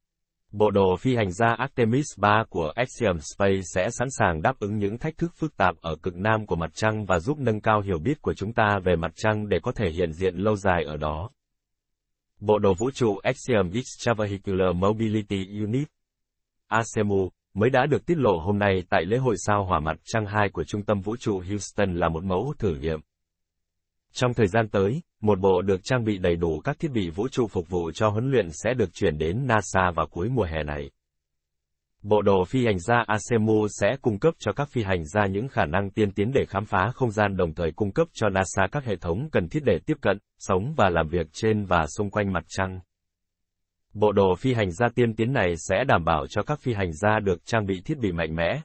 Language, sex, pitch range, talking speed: Vietnamese, male, 90-110 Hz, 225 wpm